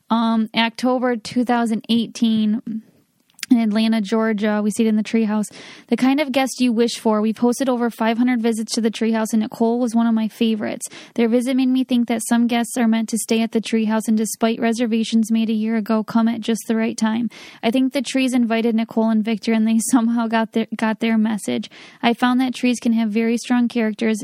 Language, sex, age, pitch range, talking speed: English, female, 10-29, 220-240 Hz, 220 wpm